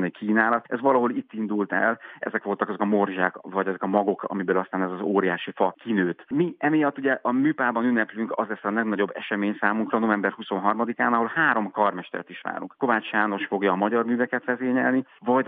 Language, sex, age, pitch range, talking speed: Hungarian, male, 30-49, 100-115 Hz, 190 wpm